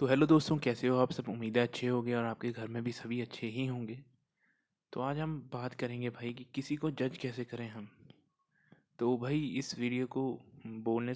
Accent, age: native, 20-39